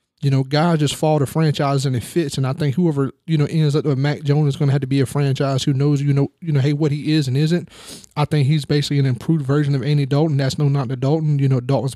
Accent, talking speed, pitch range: American, 290 wpm, 135-150 Hz